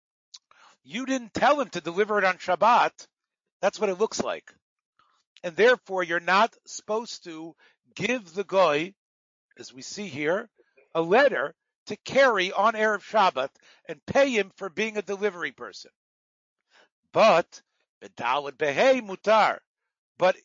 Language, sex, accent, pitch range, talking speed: English, male, American, 185-235 Hz, 130 wpm